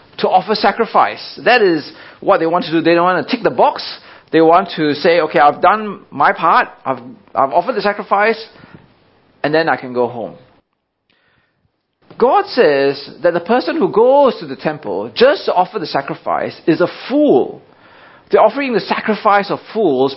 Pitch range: 145-210 Hz